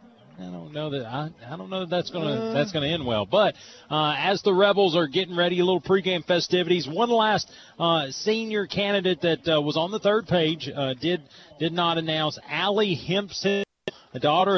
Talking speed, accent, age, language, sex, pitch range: 200 wpm, American, 40-59, English, male, 140-190 Hz